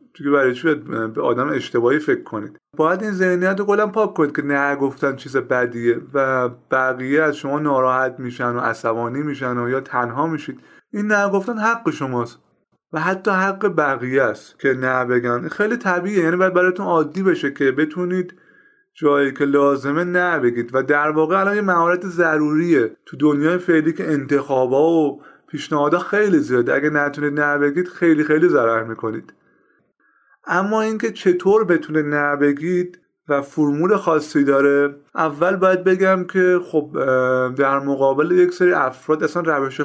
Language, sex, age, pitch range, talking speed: Persian, male, 30-49, 135-180 Hz, 155 wpm